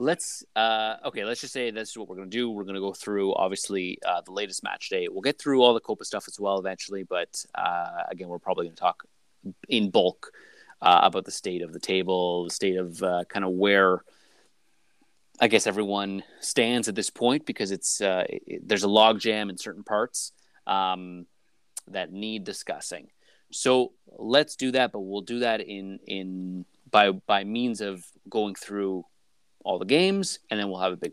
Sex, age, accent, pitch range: male, 30-49, American, 95-110 Hz